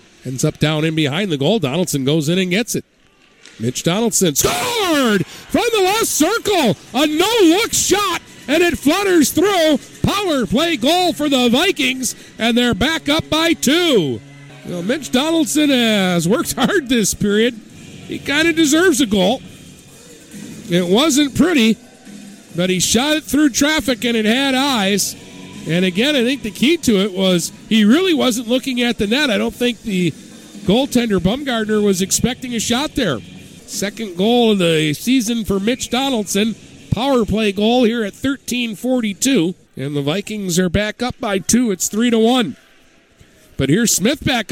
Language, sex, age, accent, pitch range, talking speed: English, male, 50-69, American, 200-300 Hz, 165 wpm